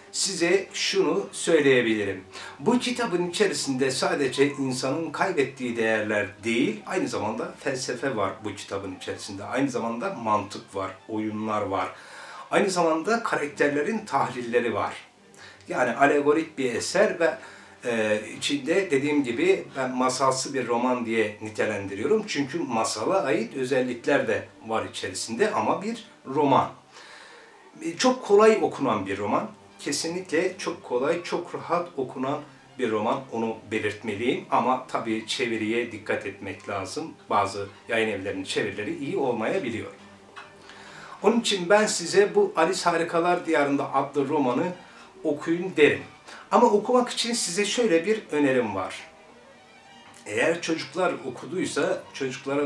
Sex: male